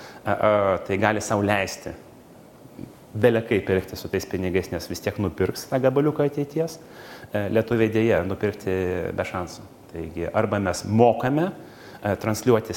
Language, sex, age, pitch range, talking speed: English, male, 30-49, 95-110 Hz, 135 wpm